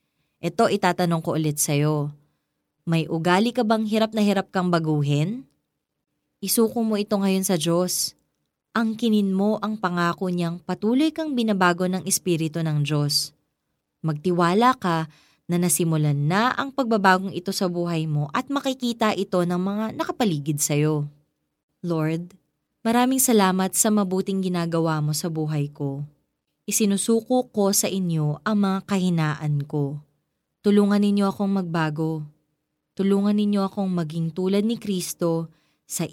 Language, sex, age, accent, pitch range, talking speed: Filipino, female, 20-39, native, 160-215 Hz, 135 wpm